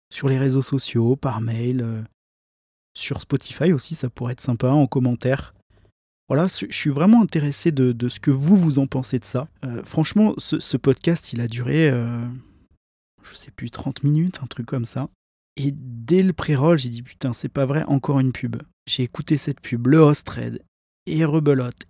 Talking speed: 190 wpm